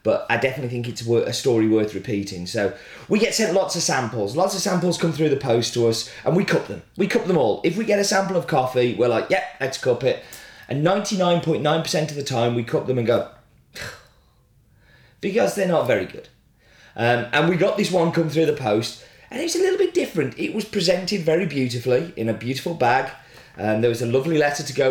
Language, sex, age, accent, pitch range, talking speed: English, male, 30-49, British, 120-170 Hz, 225 wpm